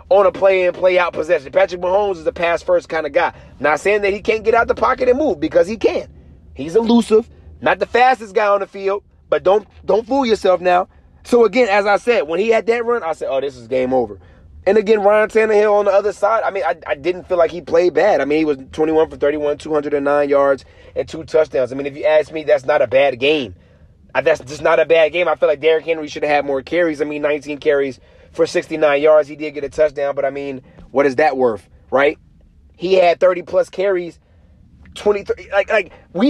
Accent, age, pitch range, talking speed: American, 30-49, 150-205 Hz, 240 wpm